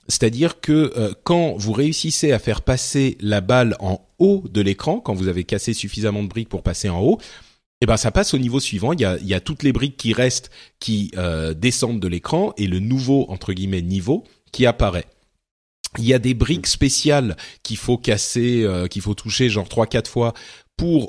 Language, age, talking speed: French, 30-49, 210 wpm